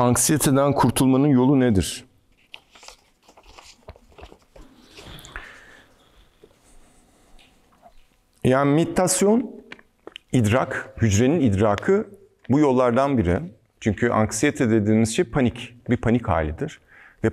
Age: 50-69